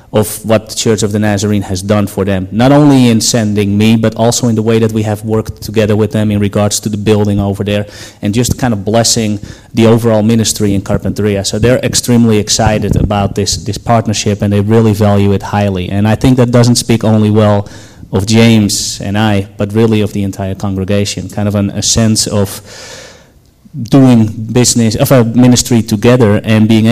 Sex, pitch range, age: male, 105-115 Hz, 30-49